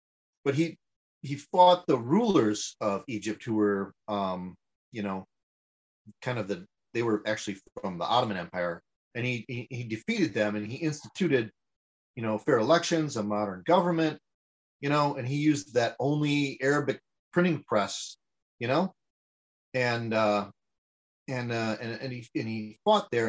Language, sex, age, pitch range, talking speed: English, male, 30-49, 100-145 Hz, 155 wpm